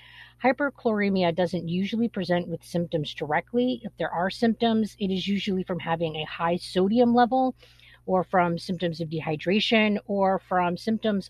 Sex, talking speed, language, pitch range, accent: female, 150 wpm, English, 155-190 Hz, American